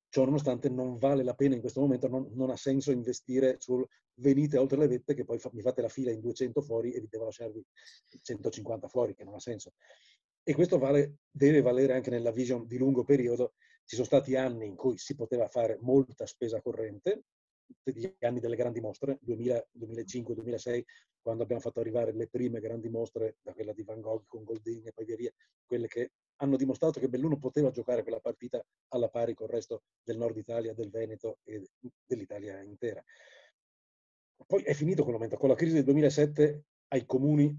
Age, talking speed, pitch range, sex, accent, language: 40-59, 190 wpm, 115-140 Hz, male, native, Italian